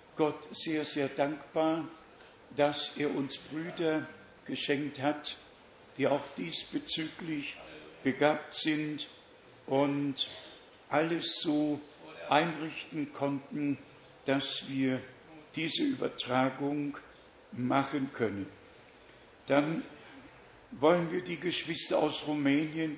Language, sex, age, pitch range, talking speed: German, male, 60-79, 135-155 Hz, 85 wpm